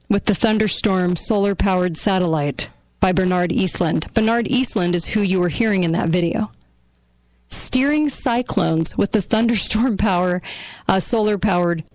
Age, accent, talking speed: 40-59, American, 130 wpm